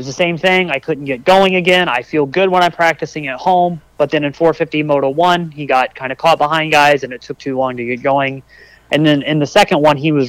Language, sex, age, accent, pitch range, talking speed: English, male, 30-49, American, 140-175 Hz, 275 wpm